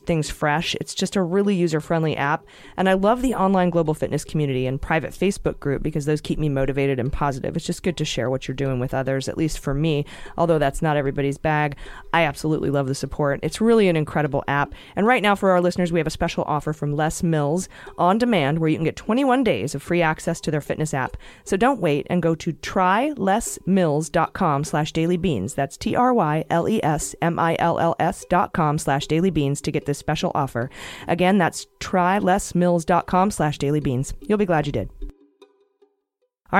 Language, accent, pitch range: English, American, 145-185 Hz